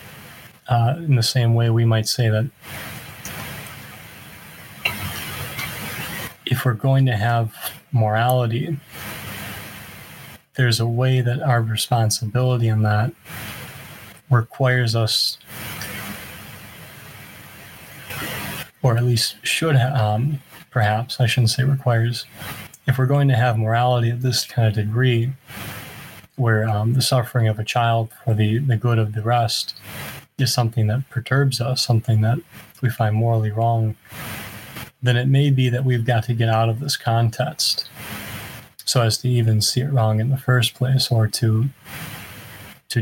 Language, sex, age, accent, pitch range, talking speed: English, male, 30-49, American, 110-130 Hz, 135 wpm